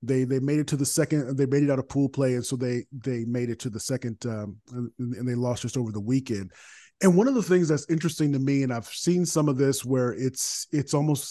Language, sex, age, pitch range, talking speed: English, male, 30-49, 125-150 Hz, 265 wpm